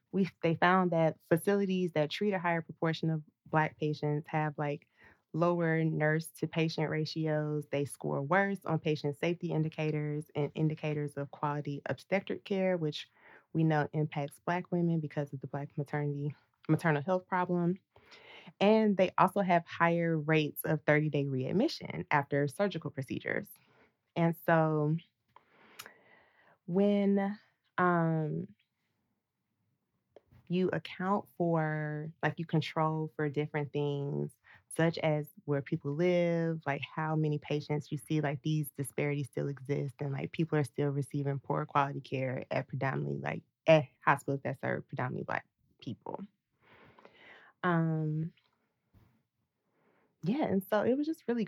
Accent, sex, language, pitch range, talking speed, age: American, female, English, 150-170 Hz, 130 wpm, 20-39